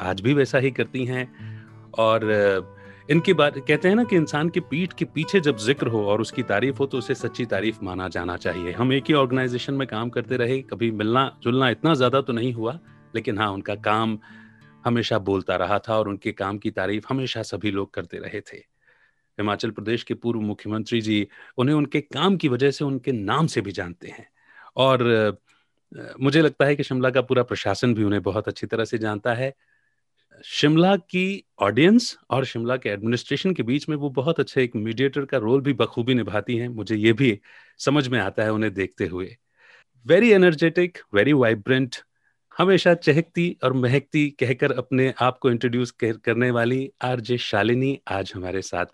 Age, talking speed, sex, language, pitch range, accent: 30-49, 190 wpm, male, Hindi, 110-140 Hz, native